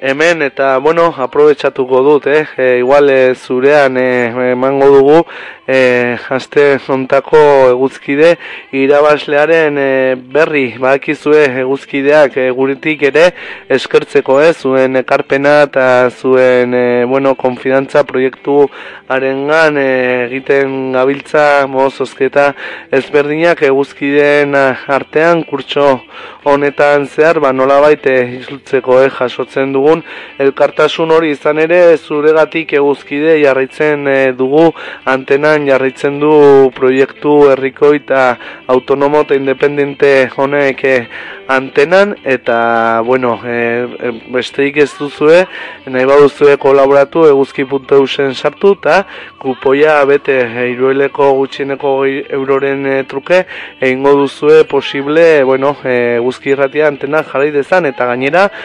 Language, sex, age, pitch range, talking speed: Spanish, male, 20-39, 130-145 Hz, 110 wpm